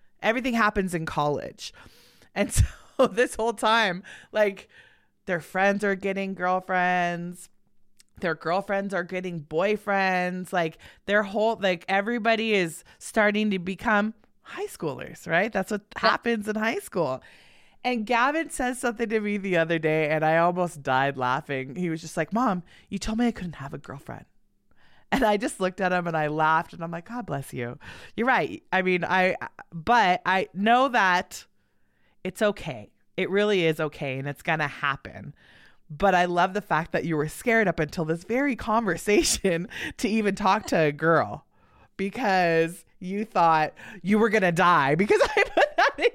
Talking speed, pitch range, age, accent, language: 175 wpm, 170-220 Hz, 20-39, American, English